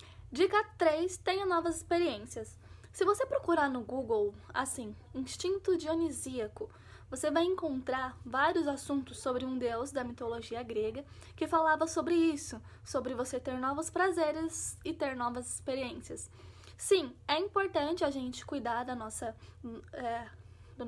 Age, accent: 10-29, Brazilian